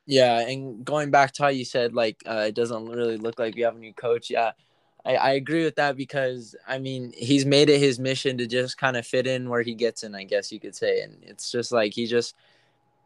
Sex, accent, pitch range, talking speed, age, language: male, American, 115-130 Hz, 255 wpm, 10-29, English